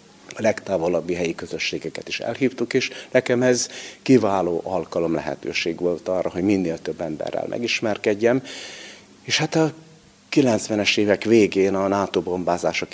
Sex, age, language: male, 50-69, Hungarian